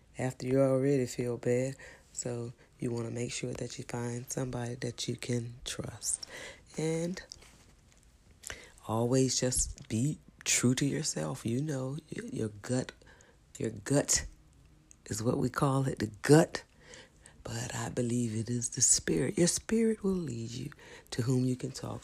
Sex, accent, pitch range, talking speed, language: female, American, 110-130 Hz, 150 wpm, English